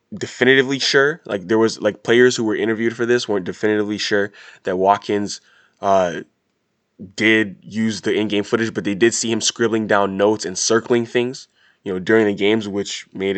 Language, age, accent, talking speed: English, 20-39, American, 185 wpm